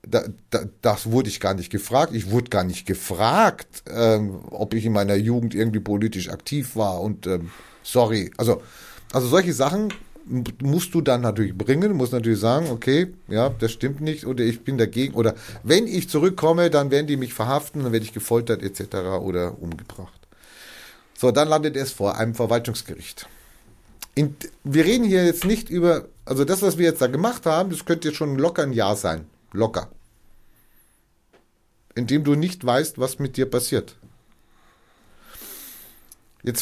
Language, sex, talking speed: German, male, 170 wpm